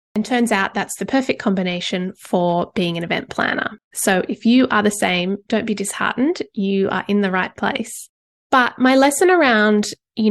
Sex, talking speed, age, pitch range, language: female, 185 wpm, 20-39, 190-225 Hz, English